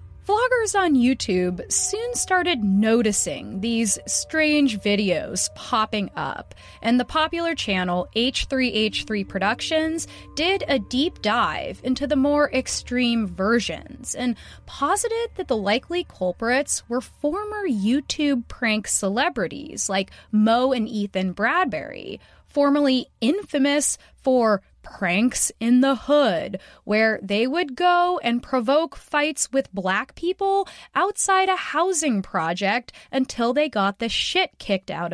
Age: 20-39